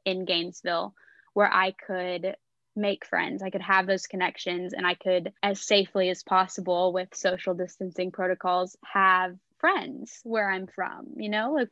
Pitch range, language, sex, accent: 185-215 Hz, English, female, American